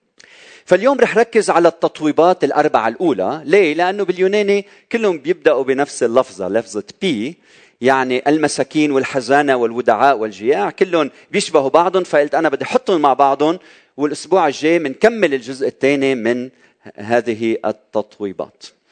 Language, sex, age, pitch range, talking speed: Arabic, male, 40-59, 145-205 Hz, 120 wpm